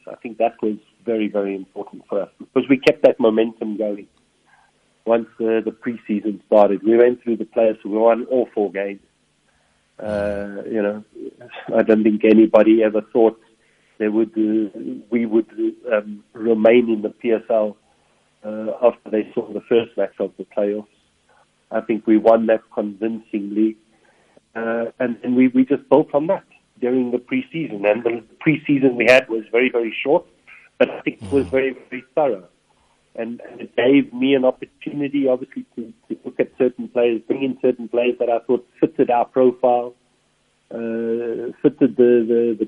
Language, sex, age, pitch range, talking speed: English, male, 40-59, 110-125 Hz, 175 wpm